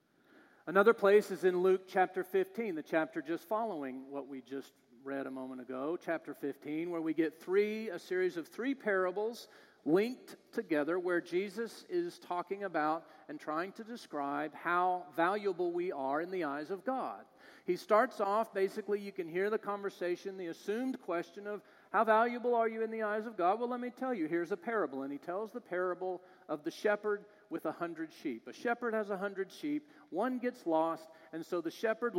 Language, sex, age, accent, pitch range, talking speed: English, male, 40-59, American, 165-230 Hz, 195 wpm